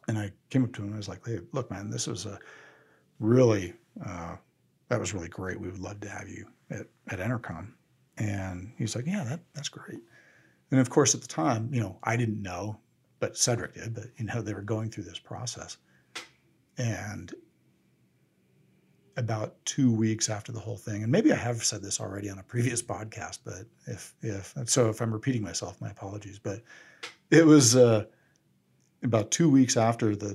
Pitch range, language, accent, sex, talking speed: 100-120 Hz, English, American, male, 195 wpm